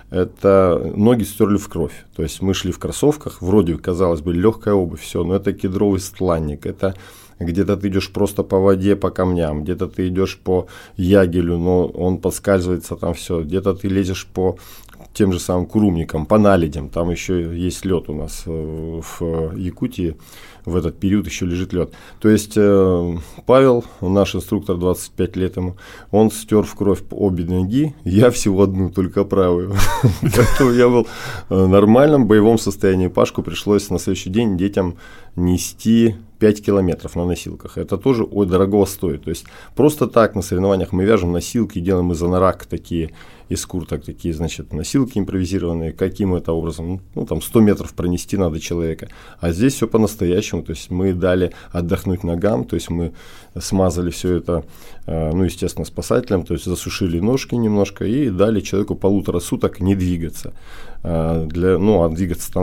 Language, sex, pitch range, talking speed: Russian, male, 85-100 Hz, 165 wpm